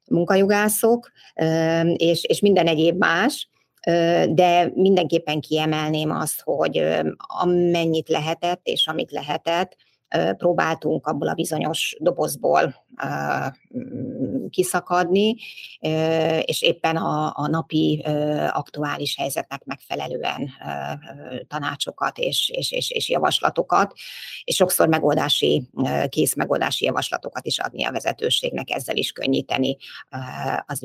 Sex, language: female, Hungarian